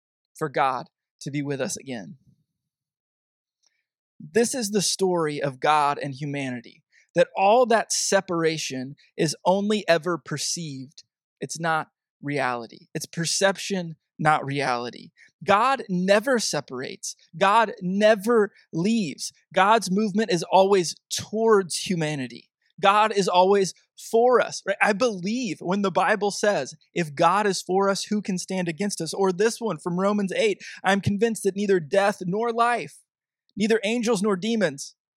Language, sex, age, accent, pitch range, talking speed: English, male, 20-39, American, 165-205 Hz, 135 wpm